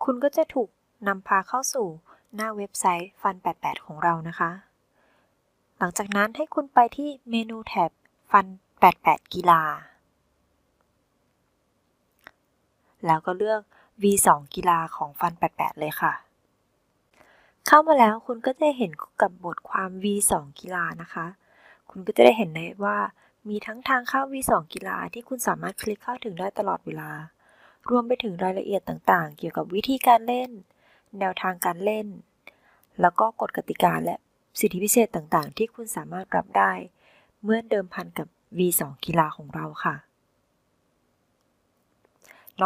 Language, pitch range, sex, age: Thai, 175-225 Hz, female, 20-39